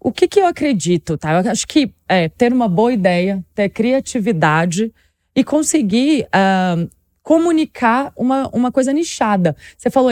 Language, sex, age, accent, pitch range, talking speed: Portuguese, female, 20-39, Brazilian, 195-275 Hz, 155 wpm